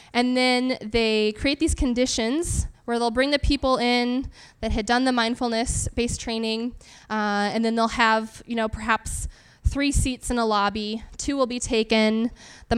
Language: English